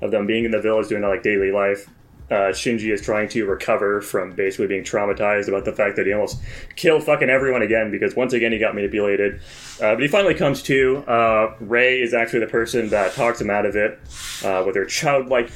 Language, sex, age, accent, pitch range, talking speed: English, male, 20-39, American, 100-120 Hz, 230 wpm